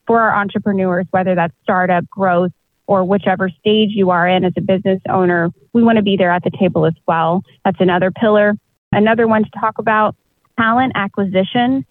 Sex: female